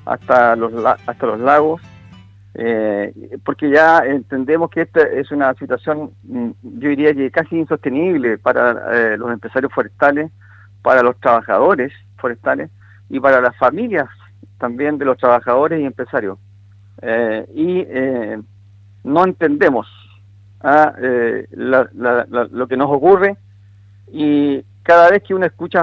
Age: 50-69